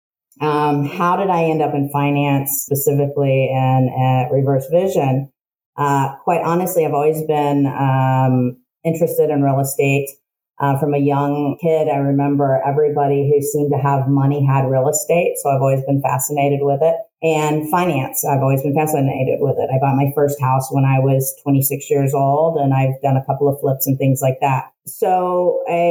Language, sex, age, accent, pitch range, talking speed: English, female, 40-59, American, 135-150 Hz, 185 wpm